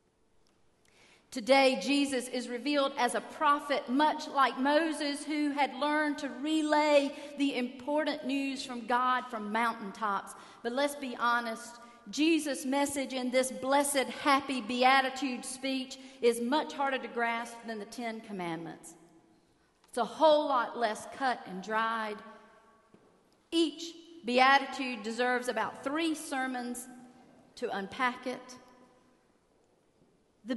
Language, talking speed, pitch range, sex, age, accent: English, 120 wpm, 230-280 Hz, female, 40-59, American